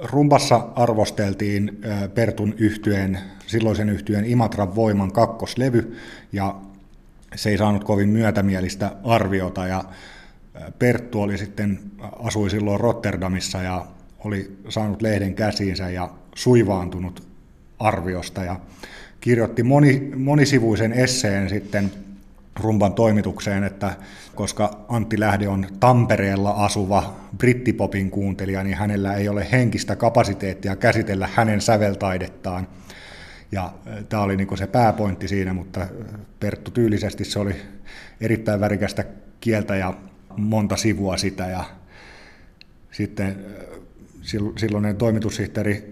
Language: Finnish